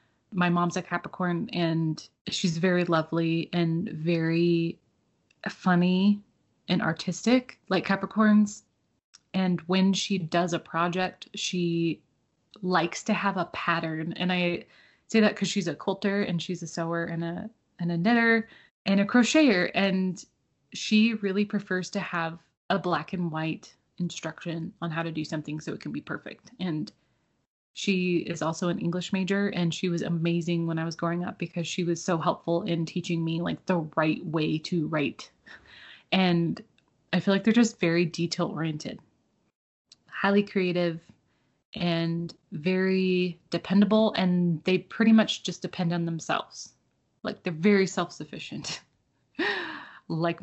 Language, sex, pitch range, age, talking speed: English, female, 170-200 Hz, 20-39, 150 wpm